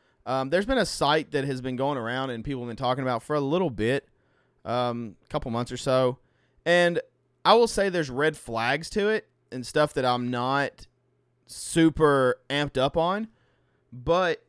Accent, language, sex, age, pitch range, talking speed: American, English, male, 30-49, 125-150 Hz, 185 wpm